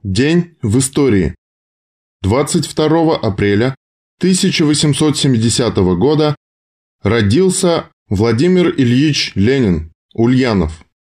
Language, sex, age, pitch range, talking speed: Russian, male, 20-39, 105-150 Hz, 65 wpm